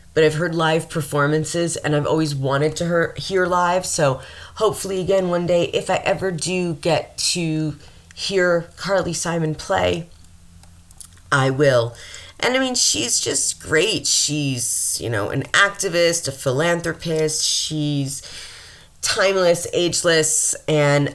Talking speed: 135 wpm